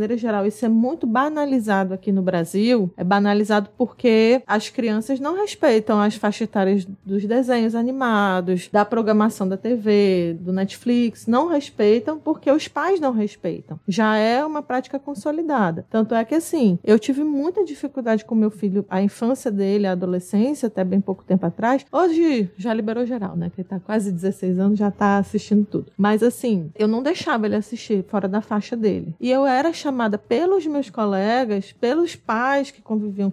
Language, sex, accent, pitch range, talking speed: Portuguese, female, Brazilian, 200-270 Hz, 180 wpm